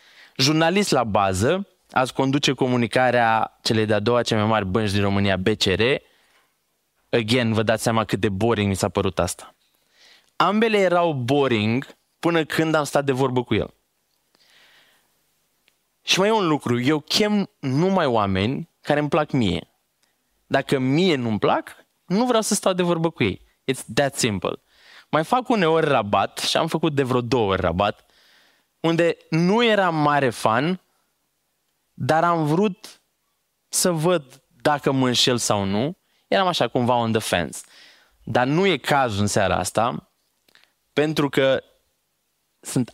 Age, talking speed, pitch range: 20-39, 155 wpm, 115-160 Hz